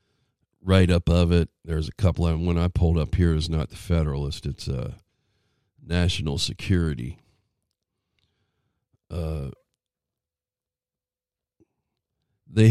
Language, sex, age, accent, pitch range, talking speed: English, male, 50-69, American, 80-100 Hz, 115 wpm